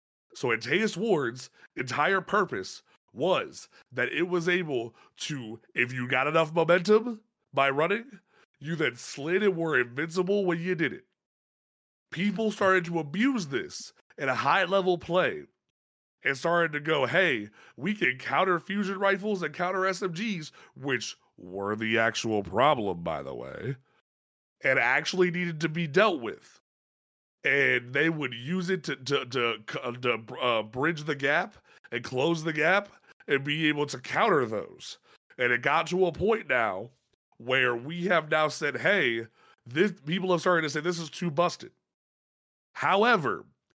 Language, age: English, 30-49